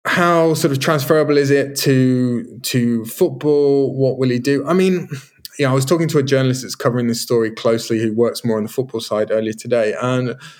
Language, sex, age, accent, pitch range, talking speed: English, male, 20-39, British, 115-145 Hz, 220 wpm